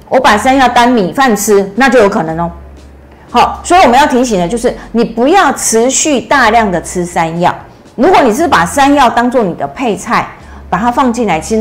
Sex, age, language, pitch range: female, 50-69, Chinese, 180-245 Hz